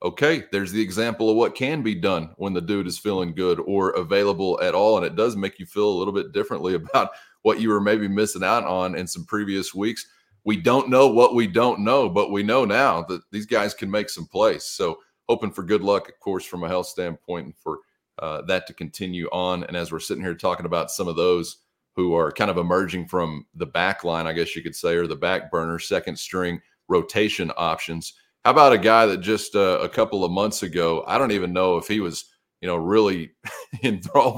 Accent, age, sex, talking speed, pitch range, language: American, 30-49, male, 230 wpm, 90-125 Hz, English